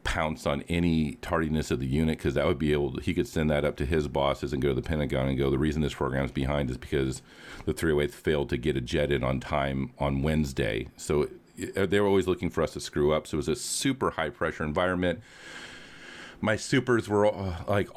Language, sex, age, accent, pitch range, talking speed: English, male, 40-59, American, 70-85 Hz, 235 wpm